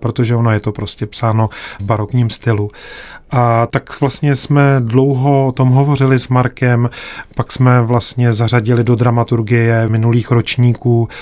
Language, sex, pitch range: Czech, male, 110-125 Hz